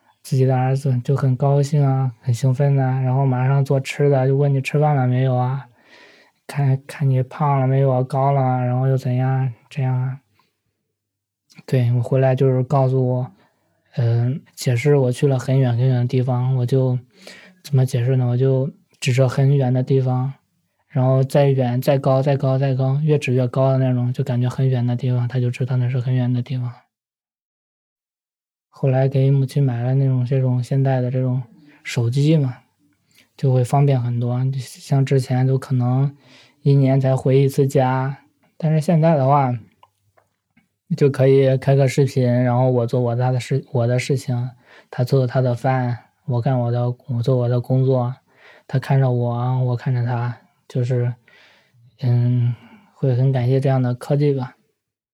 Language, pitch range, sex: Chinese, 125-135 Hz, male